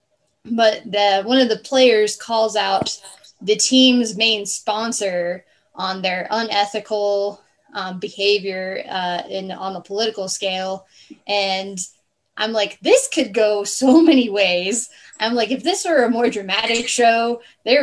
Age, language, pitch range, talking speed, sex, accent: 10-29, English, 190-245 Hz, 140 wpm, female, American